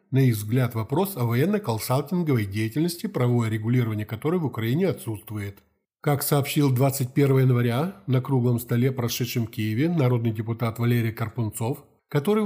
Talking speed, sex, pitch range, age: 135 wpm, male, 115-145 Hz, 20-39